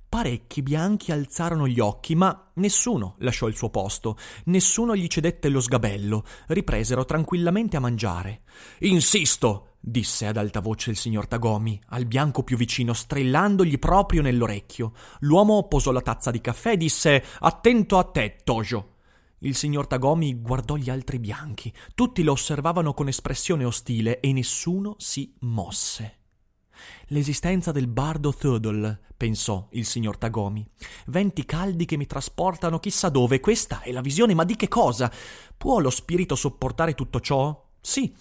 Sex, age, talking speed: male, 30-49, 150 wpm